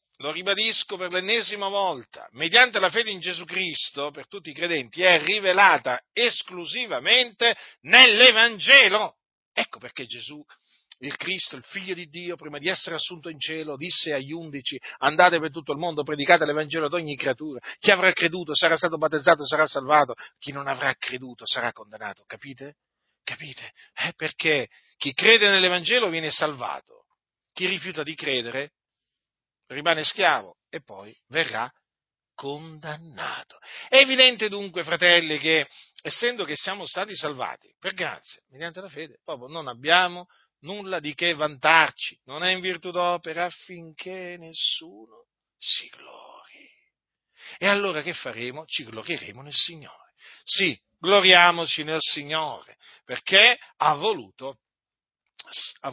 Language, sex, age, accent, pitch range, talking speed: Italian, male, 40-59, native, 150-190 Hz, 135 wpm